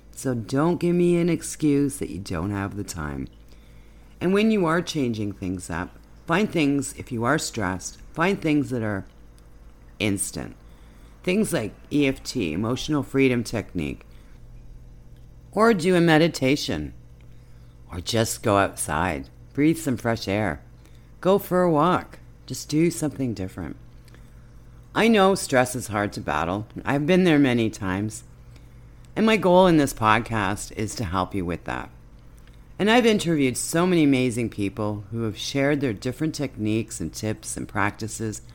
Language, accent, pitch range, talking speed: English, American, 105-150 Hz, 150 wpm